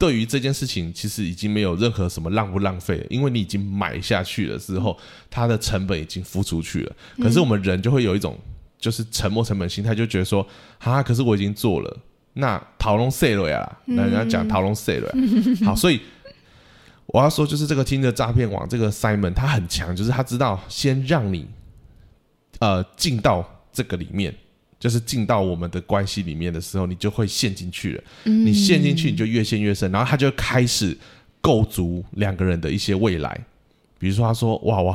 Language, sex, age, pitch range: Chinese, male, 20-39, 95-125 Hz